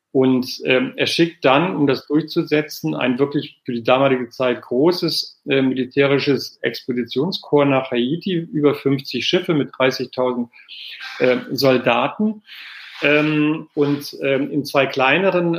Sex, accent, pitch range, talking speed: male, German, 135-155 Hz, 125 wpm